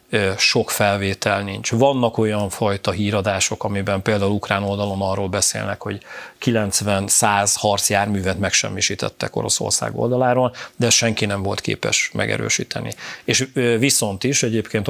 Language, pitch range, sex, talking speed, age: Hungarian, 100-115 Hz, male, 120 wpm, 40-59